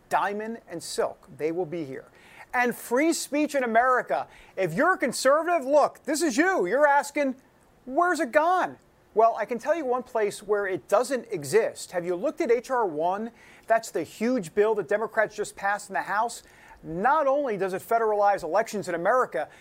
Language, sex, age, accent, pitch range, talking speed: English, male, 40-59, American, 190-275 Hz, 185 wpm